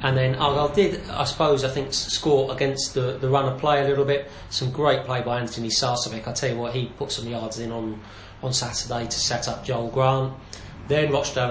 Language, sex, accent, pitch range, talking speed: English, male, British, 115-140 Hz, 225 wpm